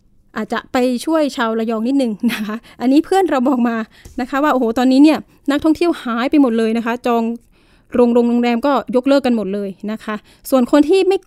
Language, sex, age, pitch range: Thai, female, 20-39, 225-280 Hz